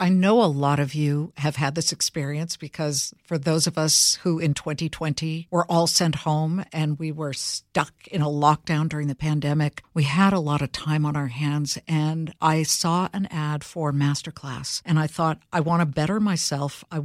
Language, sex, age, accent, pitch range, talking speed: English, female, 60-79, American, 155-190 Hz, 200 wpm